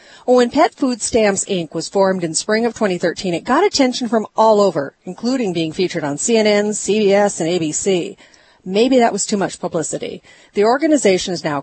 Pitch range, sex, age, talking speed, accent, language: 175-235 Hz, female, 40-59, 185 wpm, American, English